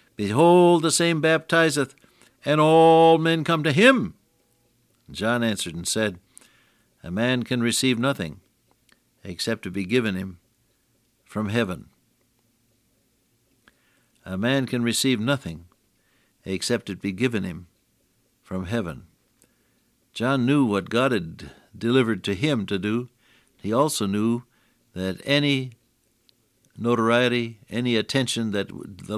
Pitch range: 105-130 Hz